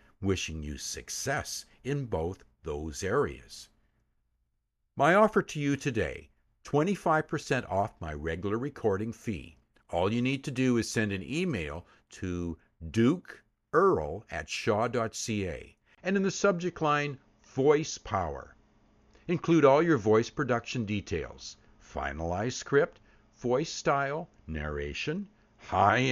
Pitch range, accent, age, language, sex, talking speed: 95-150 Hz, American, 60-79, English, male, 115 wpm